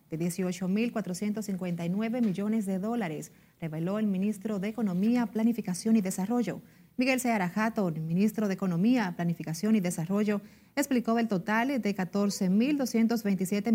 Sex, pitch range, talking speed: female, 185-225 Hz, 120 wpm